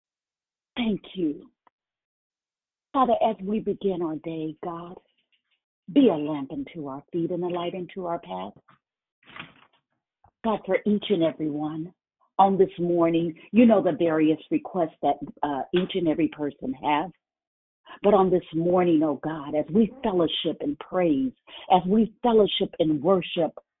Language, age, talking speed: English, 50-69, 145 wpm